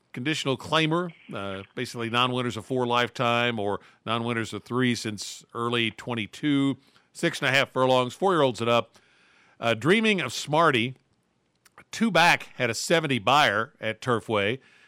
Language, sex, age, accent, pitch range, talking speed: English, male, 50-69, American, 115-140 Hz, 125 wpm